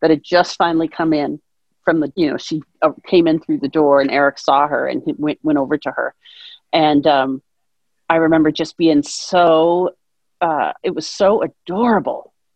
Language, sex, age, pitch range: English, female, 40-59, 155-205 Hz